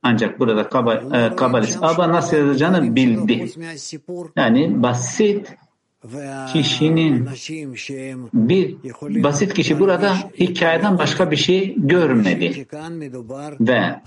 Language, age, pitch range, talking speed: English, 60-79, 130-165 Hz, 95 wpm